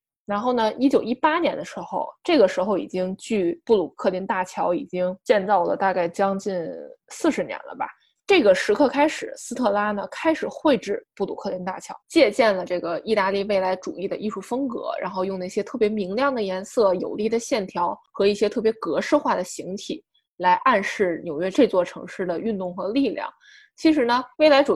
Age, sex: 20-39, female